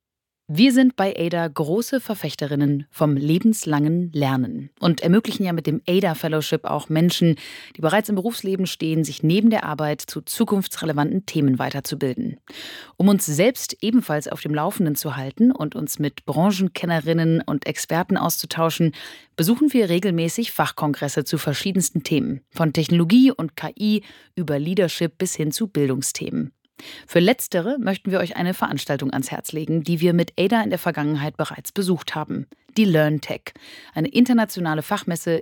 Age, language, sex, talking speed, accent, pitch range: 30-49, German, female, 150 wpm, German, 155-200 Hz